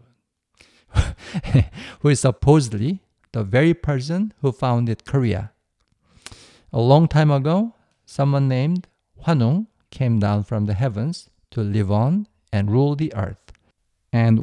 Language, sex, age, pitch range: Korean, male, 50-69, 105-145 Hz